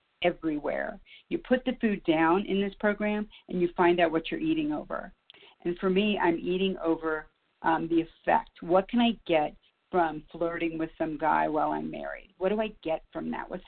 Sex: female